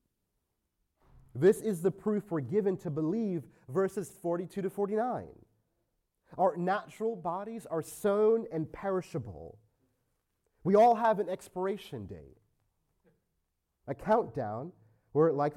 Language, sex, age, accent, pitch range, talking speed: English, male, 30-49, American, 120-190 Hz, 110 wpm